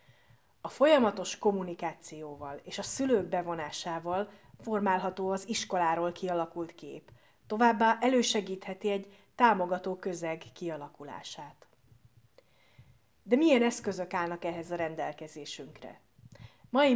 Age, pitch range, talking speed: 30-49, 155-205 Hz, 90 wpm